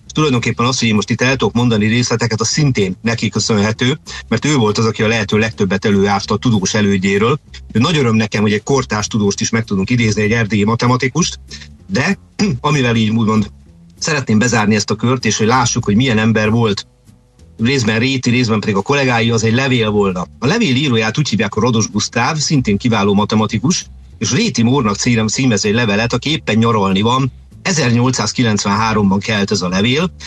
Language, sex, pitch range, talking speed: Hungarian, male, 105-125 Hz, 185 wpm